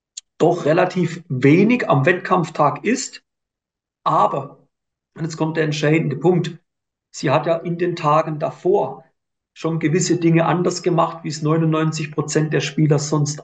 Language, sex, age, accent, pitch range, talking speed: German, male, 40-59, German, 145-175 Hz, 140 wpm